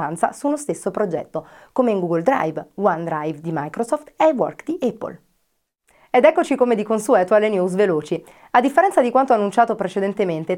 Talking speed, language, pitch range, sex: 165 wpm, Italian, 170-235 Hz, female